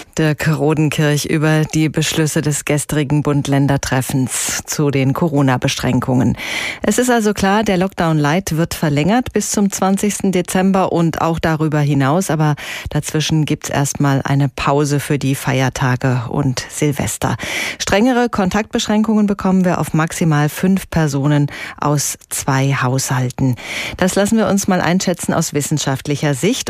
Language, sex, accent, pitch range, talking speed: German, female, German, 150-195 Hz, 135 wpm